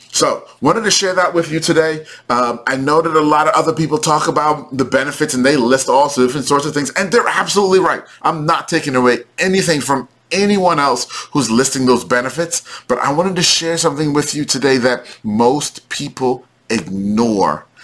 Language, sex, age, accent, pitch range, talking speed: English, male, 30-49, American, 125-165 Hz, 200 wpm